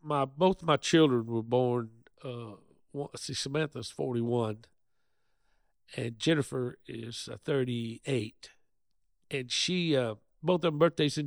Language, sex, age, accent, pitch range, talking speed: English, male, 50-69, American, 115-145 Hz, 115 wpm